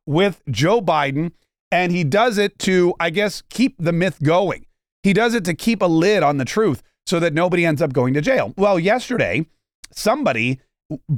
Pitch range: 140-190 Hz